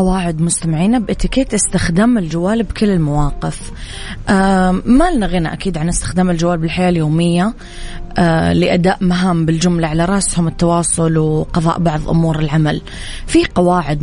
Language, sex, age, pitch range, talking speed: English, female, 20-39, 165-205 Hz, 115 wpm